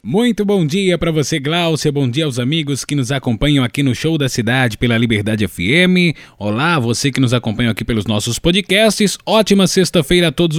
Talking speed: 200 wpm